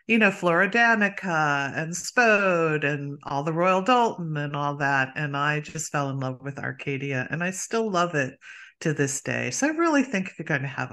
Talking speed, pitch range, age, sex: 210 wpm, 145-195 Hz, 50-69, female